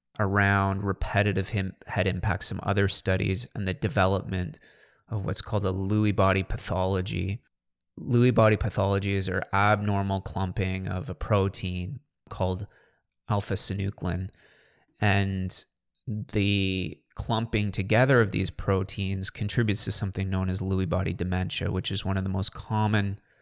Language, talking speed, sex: English, 130 wpm, male